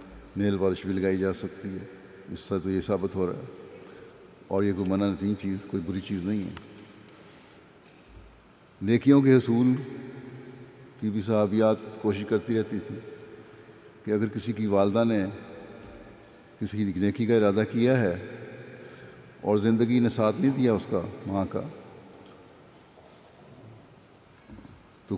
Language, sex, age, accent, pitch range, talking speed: English, male, 60-79, Indian, 100-115 Hz, 135 wpm